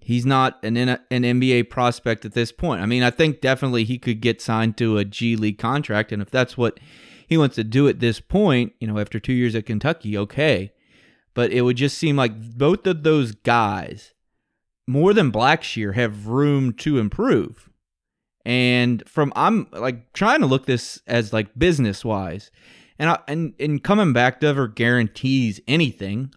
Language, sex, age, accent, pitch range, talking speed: English, male, 30-49, American, 110-140 Hz, 185 wpm